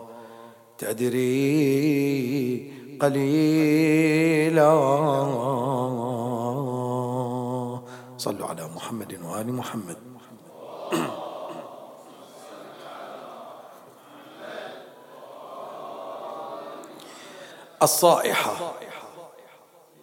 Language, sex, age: English, male, 40-59